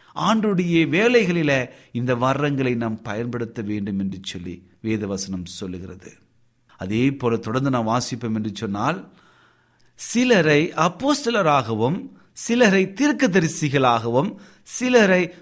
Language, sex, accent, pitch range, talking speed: Tamil, male, native, 125-195 Hz, 80 wpm